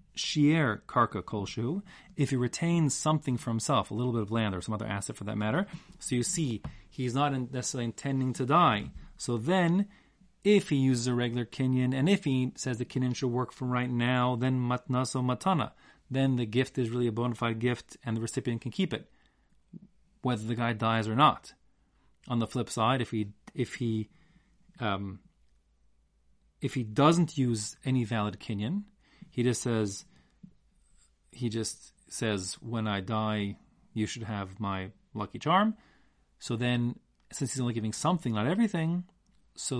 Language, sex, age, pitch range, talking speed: English, male, 30-49, 110-140 Hz, 170 wpm